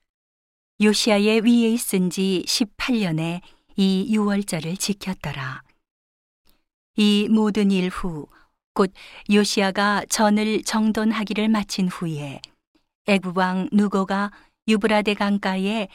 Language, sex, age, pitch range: Korean, female, 40-59, 180-215 Hz